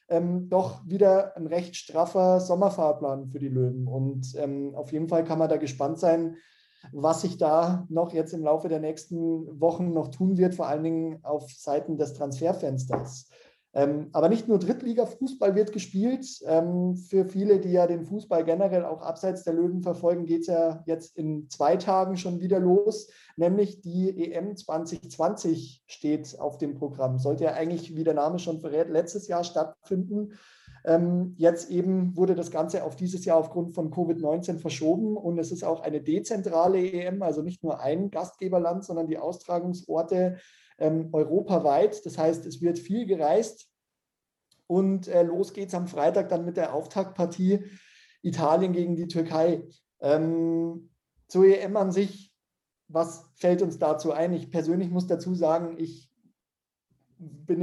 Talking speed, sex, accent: 160 wpm, male, German